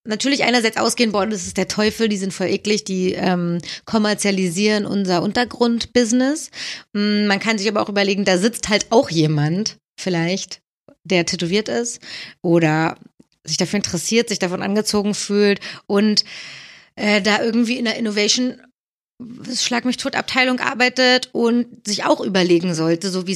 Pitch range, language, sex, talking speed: 180-225 Hz, German, female, 145 wpm